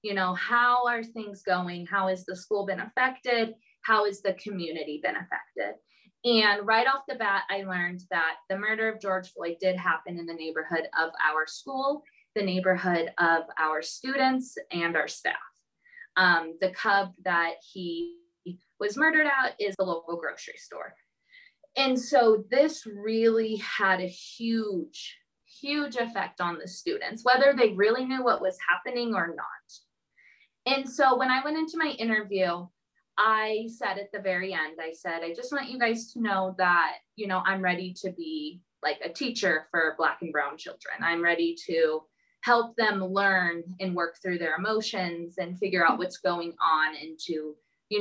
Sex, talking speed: female, 175 wpm